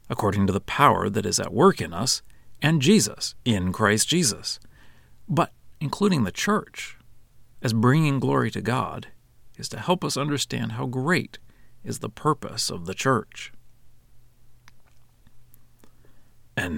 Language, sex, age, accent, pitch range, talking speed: English, male, 40-59, American, 110-135 Hz, 135 wpm